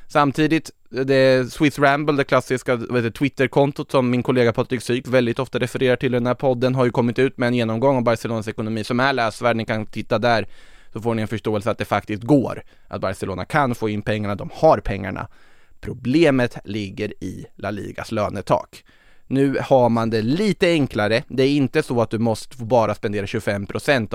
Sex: male